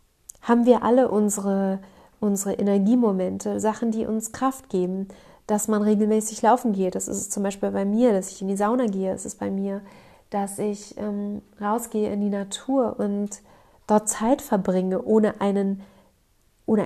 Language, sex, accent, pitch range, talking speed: German, female, German, 195-215 Hz, 175 wpm